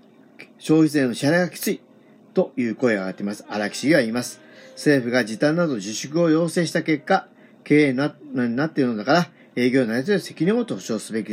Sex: male